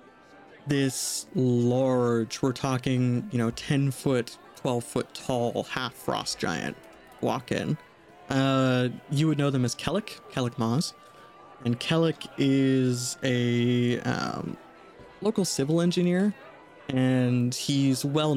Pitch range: 120-145 Hz